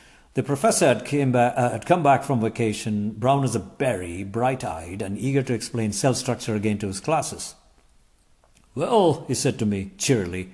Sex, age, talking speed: male, 50-69, 180 wpm